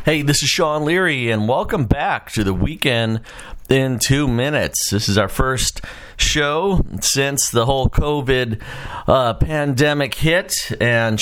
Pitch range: 90-130 Hz